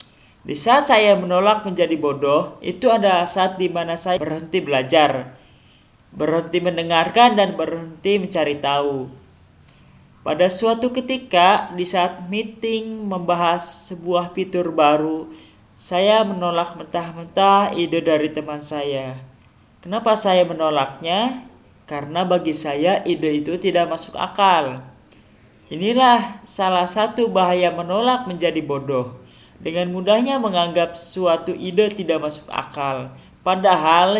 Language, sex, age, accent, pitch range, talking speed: Indonesian, male, 20-39, native, 150-195 Hz, 110 wpm